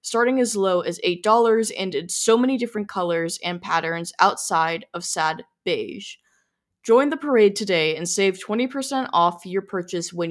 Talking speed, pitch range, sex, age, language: 165 wpm, 185-235 Hz, female, 10-29, English